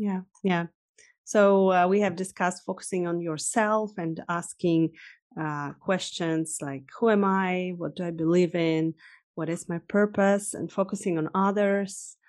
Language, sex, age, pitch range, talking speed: English, female, 30-49, 170-200 Hz, 150 wpm